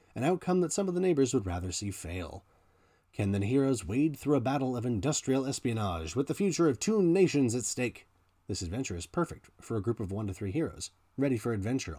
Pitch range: 95-140 Hz